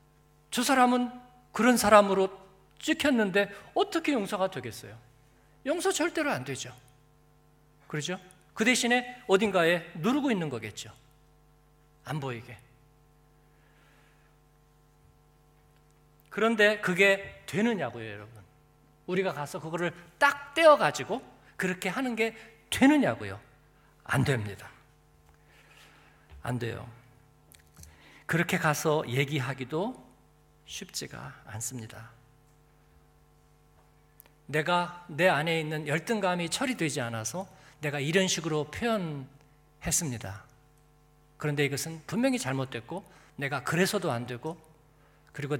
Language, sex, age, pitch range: Korean, male, 50-69, 130-180 Hz